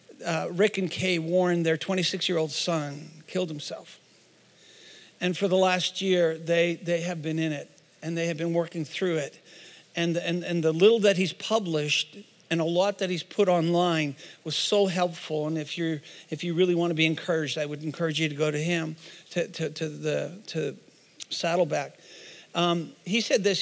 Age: 50-69